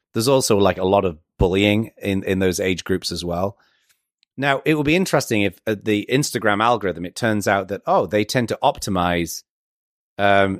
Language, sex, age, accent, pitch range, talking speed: English, male, 30-49, British, 95-120 Hz, 195 wpm